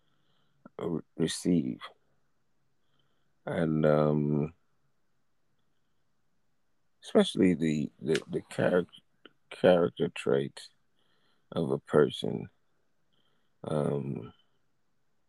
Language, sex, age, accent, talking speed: English, male, 50-69, American, 55 wpm